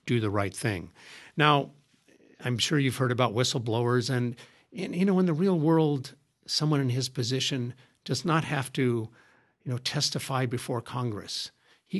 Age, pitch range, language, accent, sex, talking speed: 60-79, 120-145 Hz, English, American, male, 165 wpm